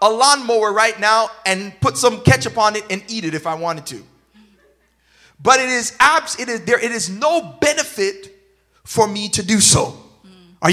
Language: English